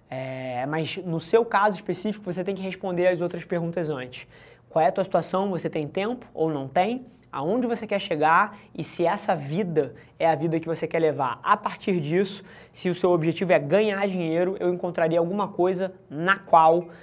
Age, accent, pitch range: 20-39, Brazilian, 155-180 Hz